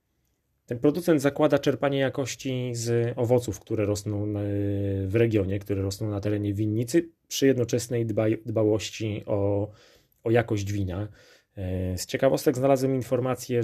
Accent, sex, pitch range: native, male, 100-120 Hz